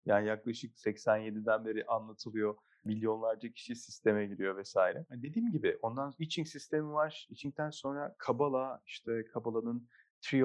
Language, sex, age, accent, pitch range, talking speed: Turkish, male, 30-49, native, 110-145 Hz, 140 wpm